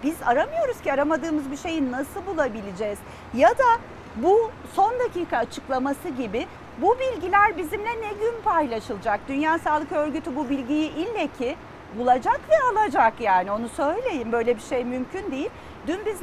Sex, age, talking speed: female, 40-59, 150 wpm